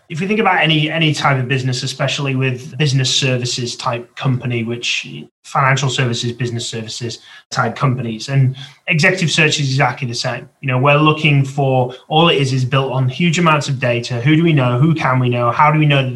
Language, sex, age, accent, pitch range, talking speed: English, male, 30-49, British, 120-145 Hz, 210 wpm